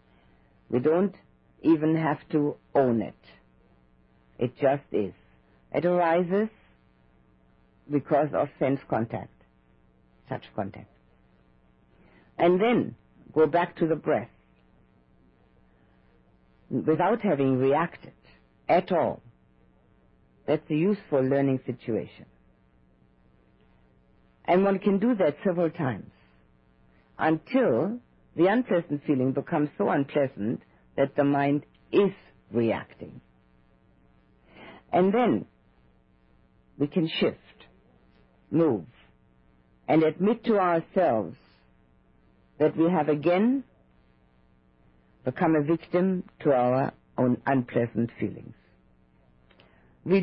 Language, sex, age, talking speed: English, female, 50-69, 90 wpm